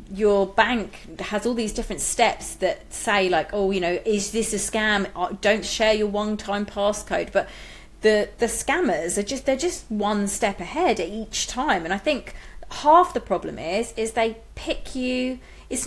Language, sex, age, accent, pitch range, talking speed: English, female, 30-49, British, 200-255 Hz, 180 wpm